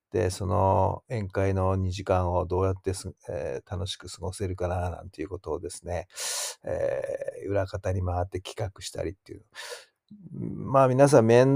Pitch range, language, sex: 95-115 Hz, Japanese, male